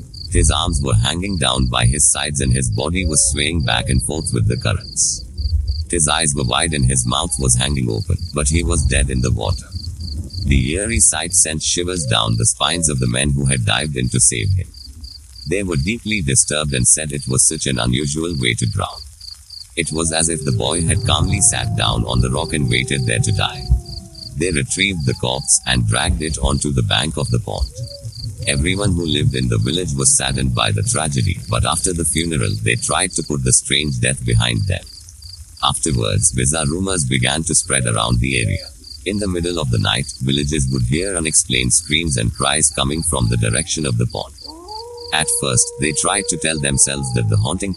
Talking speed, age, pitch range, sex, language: 205 wpm, 50-69, 65-90 Hz, male, English